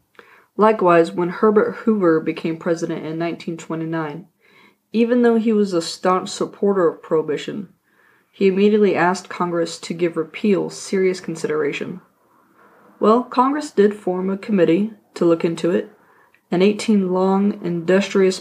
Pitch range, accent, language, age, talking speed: 170-210 Hz, American, English, 20-39, 130 wpm